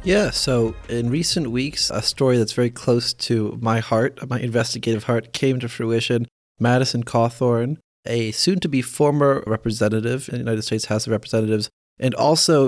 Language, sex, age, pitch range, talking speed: English, male, 30-49, 115-140 Hz, 160 wpm